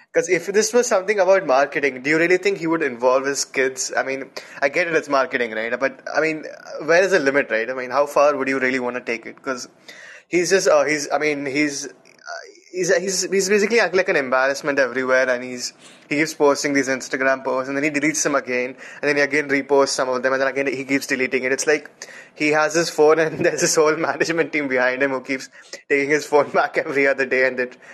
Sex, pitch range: male, 130-170 Hz